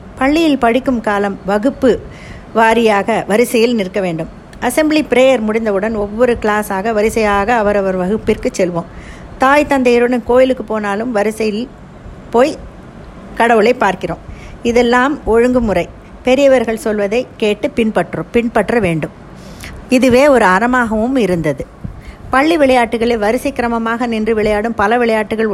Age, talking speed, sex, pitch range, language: 50-69, 105 wpm, female, 205-245 Hz, Tamil